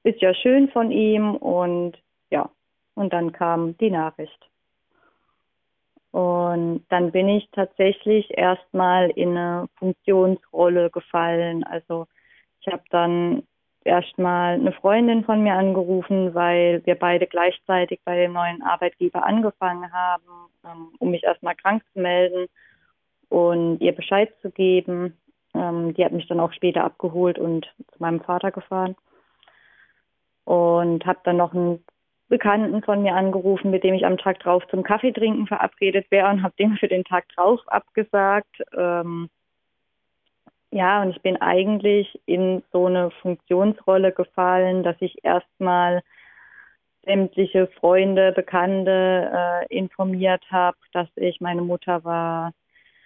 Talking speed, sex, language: 135 wpm, female, German